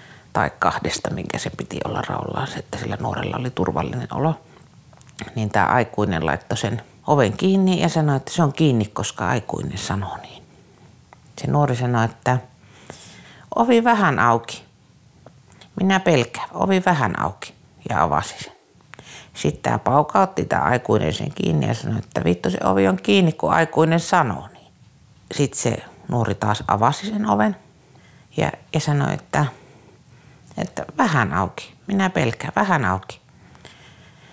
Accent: native